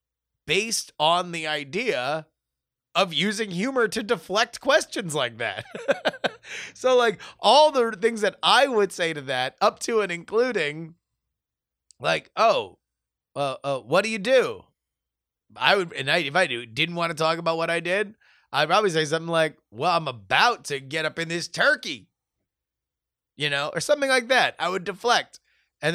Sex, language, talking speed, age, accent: male, English, 170 wpm, 30-49, American